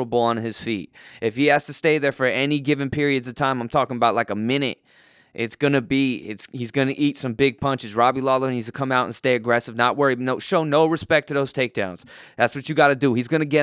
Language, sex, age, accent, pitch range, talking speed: English, male, 20-39, American, 115-145 Hz, 255 wpm